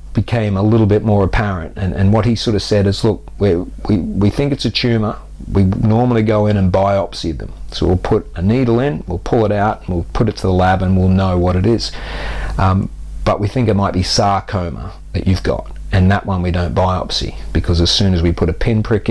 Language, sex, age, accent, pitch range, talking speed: English, male, 40-59, Australian, 90-105 Hz, 240 wpm